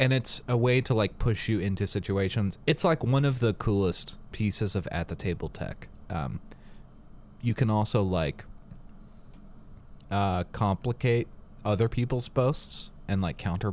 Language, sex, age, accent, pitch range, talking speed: English, male, 30-49, American, 95-120 Hz, 140 wpm